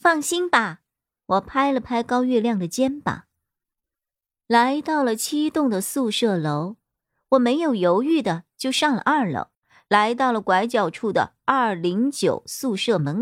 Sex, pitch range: male, 190-270 Hz